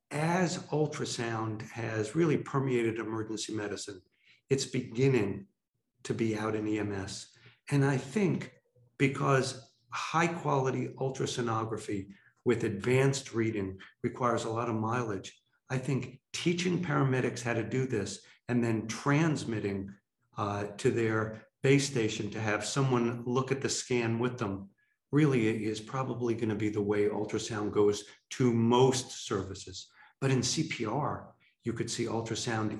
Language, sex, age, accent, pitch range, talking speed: English, male, 50-69, American, 105-130 Hz, 135 wpm